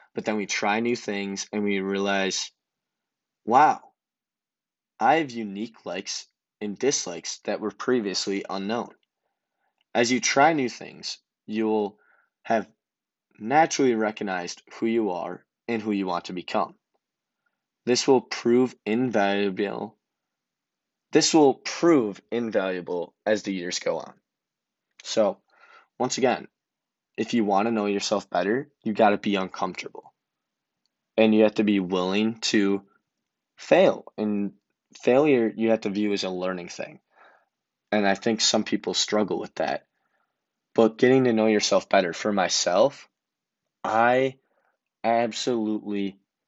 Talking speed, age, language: 130 wpm, 20-39, English